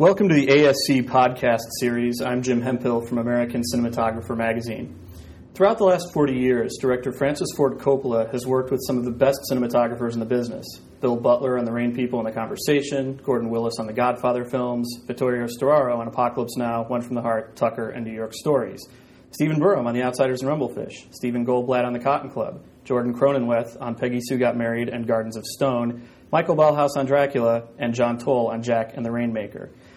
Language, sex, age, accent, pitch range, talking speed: English, male, 30-49, American, 120-135 Hz, 195 wpm